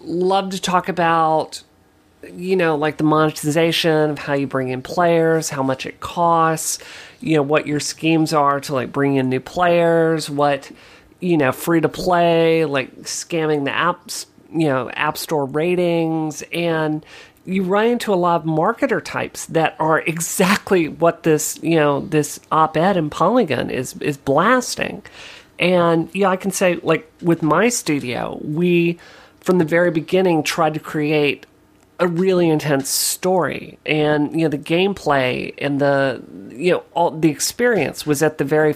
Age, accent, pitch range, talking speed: 40-59, American, 145-170 Hz, 170 wpm